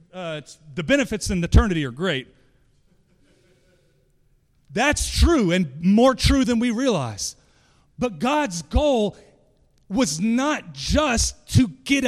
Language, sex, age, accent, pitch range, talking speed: English, male, 30-49, American, 150-230 Hz, 115 wpm